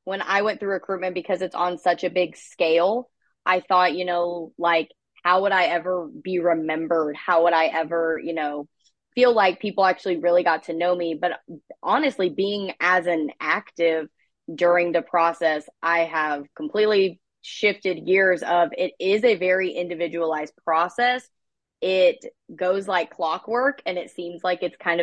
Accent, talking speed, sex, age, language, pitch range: American, 165 wpm, female, 20-39, English, 170-210 Hz